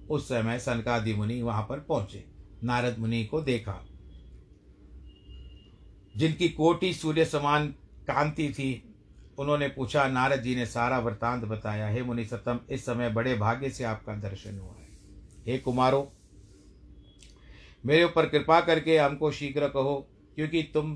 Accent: native